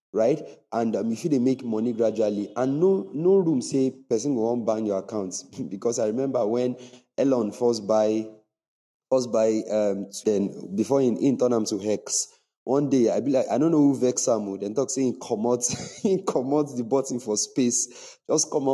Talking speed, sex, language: 180 wpm, male, English